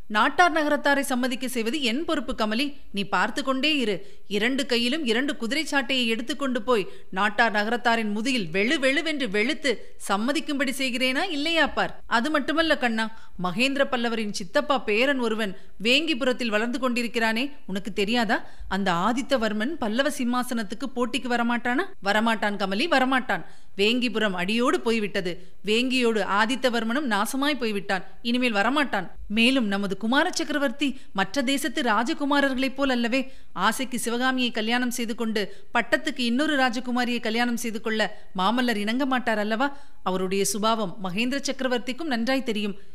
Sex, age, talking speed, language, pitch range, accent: female, 30-49, 120 wpm, Tamil, 215-275 Hz, native